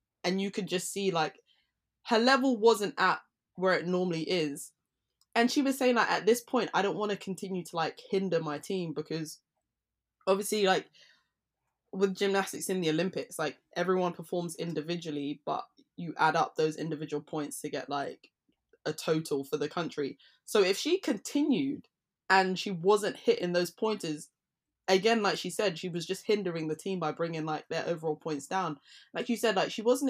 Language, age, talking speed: English, 20-39, 185 wpm